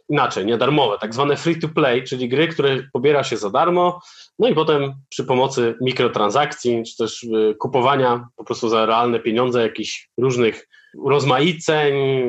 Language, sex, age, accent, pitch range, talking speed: Polish, male, 20-39, native, 125-160 Hz, 140 wpm